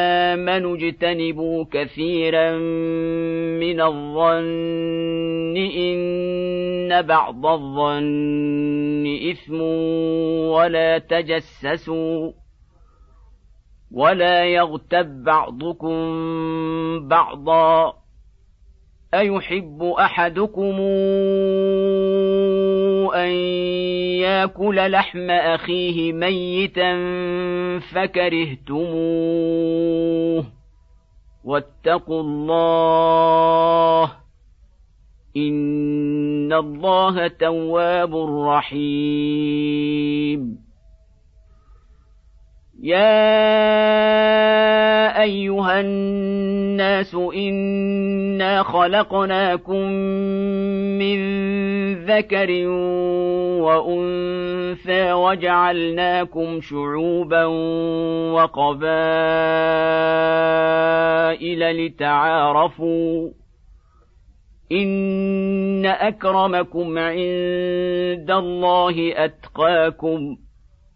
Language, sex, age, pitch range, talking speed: Arabic, male, 50-69, 160-185 Hz, 40 wpm